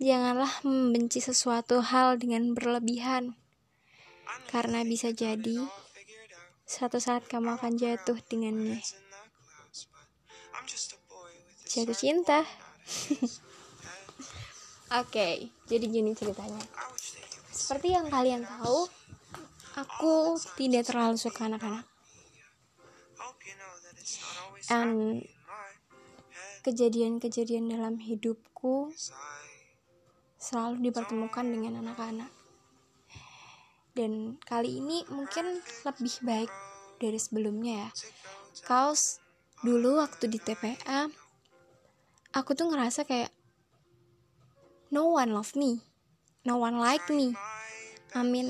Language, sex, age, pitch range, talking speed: Indonesian, female, 20-39, 225-255 Hz, 85 wpm